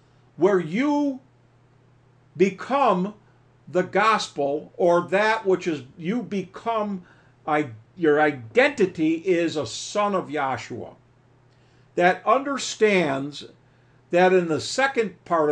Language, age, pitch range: English, 60-79, 145-215 Hz